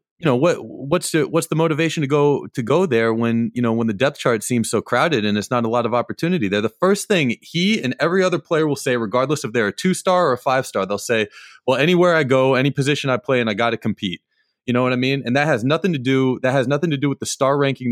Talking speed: 290 wpm